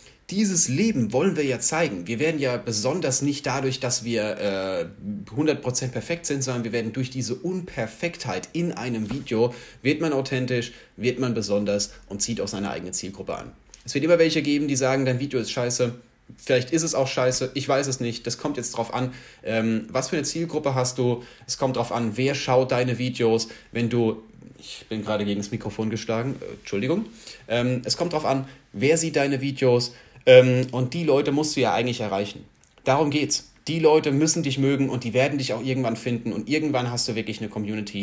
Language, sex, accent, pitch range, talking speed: German, male, German, 110-135 Hz, 205 wpm